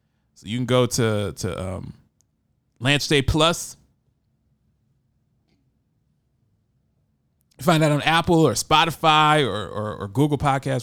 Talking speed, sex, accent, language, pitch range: 115 wpm, male, American, English, 115-140 Hz